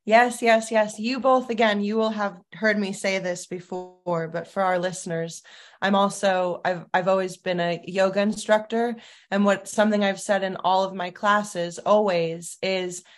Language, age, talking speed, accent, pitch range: English, 20-39, 180 wpm, American, 180-205 Hz